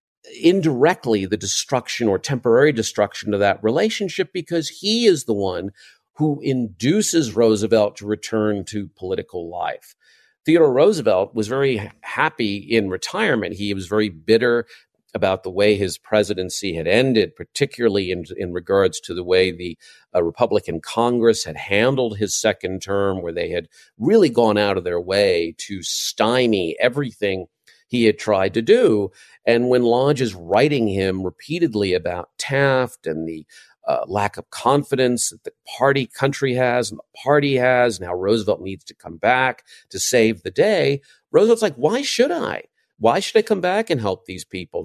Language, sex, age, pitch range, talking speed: English, male, 50-69, 100-135 Hz, 160 wpm